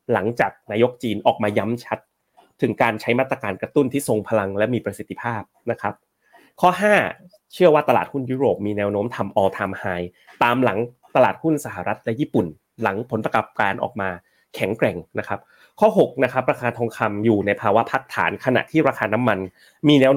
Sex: male